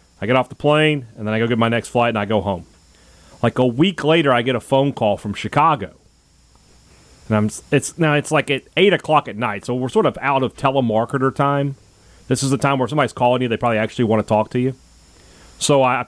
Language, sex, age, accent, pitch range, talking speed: English, male, 30-49, American, 110-150 Hz, 245 wpm